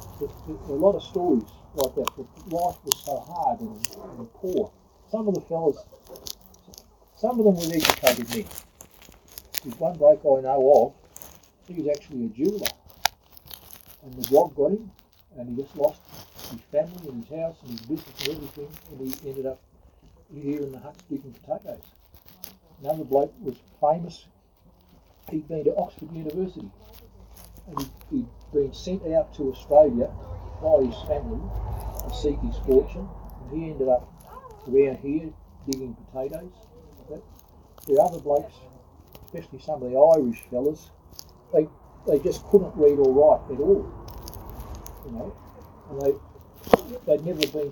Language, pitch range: English, 120-165 Hz